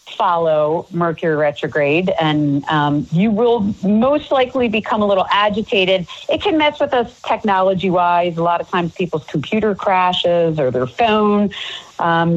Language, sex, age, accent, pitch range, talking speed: English, female, 40-59, American, 170-230 Hz, 145 wpm